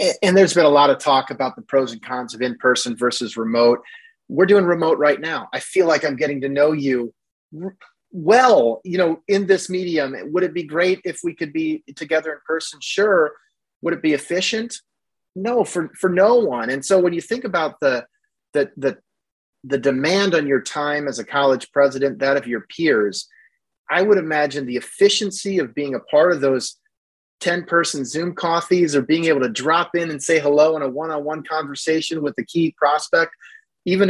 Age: 30-49